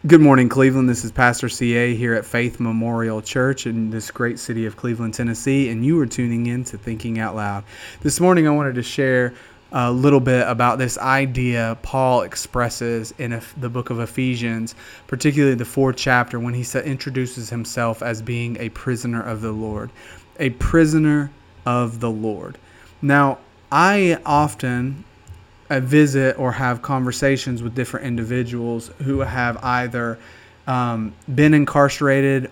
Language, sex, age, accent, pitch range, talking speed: English, male, 30-49, American, 115-135 Hz, 155 wpm